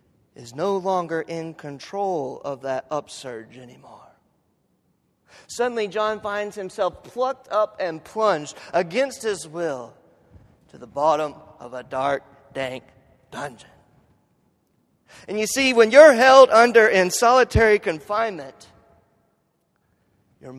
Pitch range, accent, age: 150-235 Hz, American, 30-49